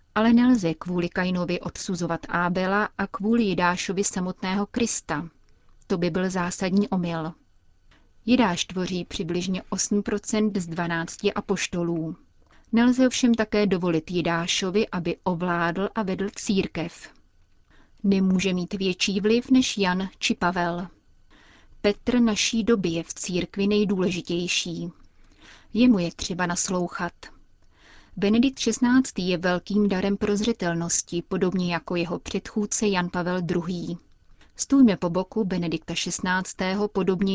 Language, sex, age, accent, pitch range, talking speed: Czech, female, 30-49, native, 170-200 Hz, 115 wpm